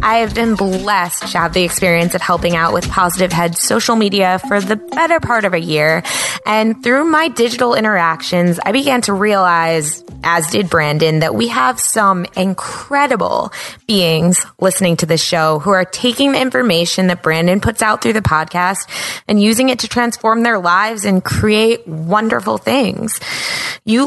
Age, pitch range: 20-39, 170-230 Hz